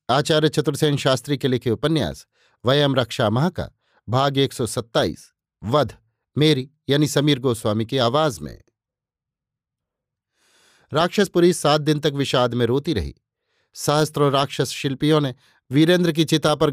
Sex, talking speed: male, 120 wpm